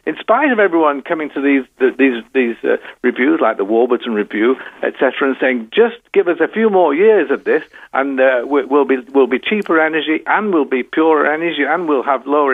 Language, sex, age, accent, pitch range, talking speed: English, male, 60-79, British, 130-180 Hz, 220 wpm